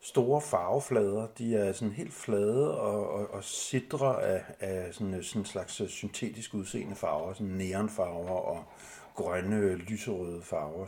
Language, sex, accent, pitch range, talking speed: Danish, male, native, 95-110 Hz, 140 wpm